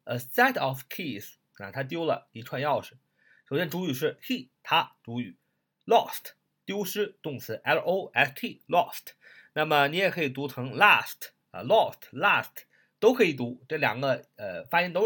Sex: male